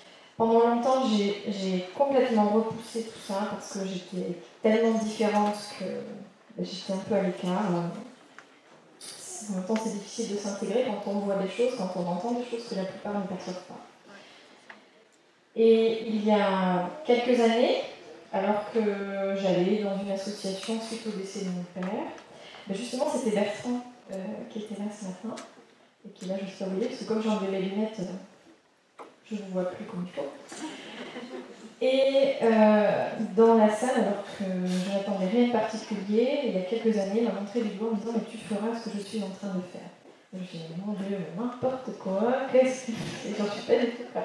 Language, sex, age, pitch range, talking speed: French, female, 20-39, 195-230 Hz, 190 wpm